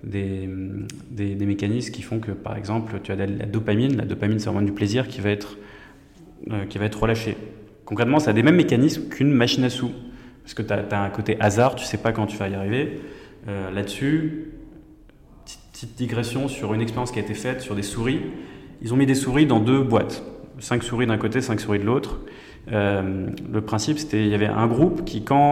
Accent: French